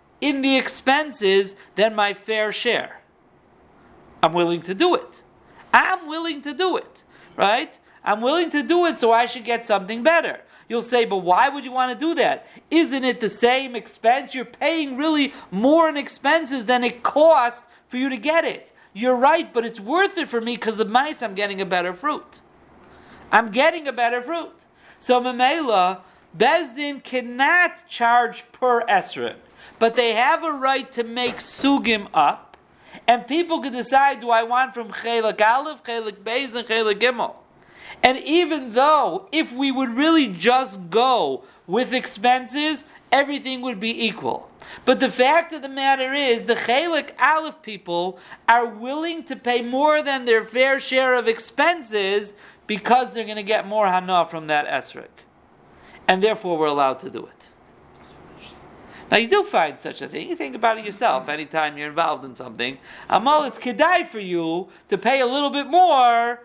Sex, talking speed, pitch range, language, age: male, 175 wpm, 225-290 Hz, English, 50-69